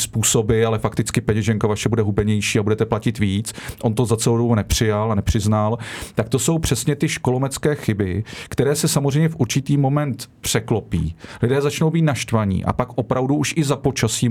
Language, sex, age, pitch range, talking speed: Czech, male, 40-59, 110-130 Hz, 185 wpm